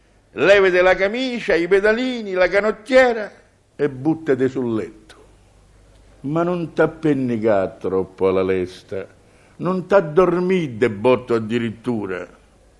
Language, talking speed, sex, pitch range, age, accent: Italian, 110 wpm, male, 115-160 Hz, 60-79, native